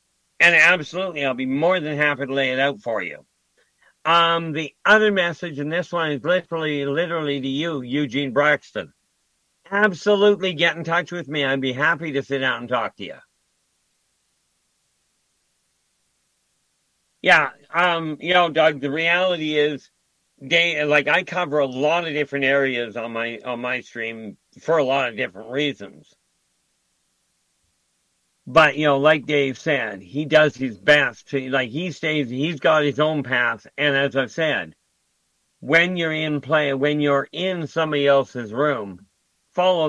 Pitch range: 100-160 Hz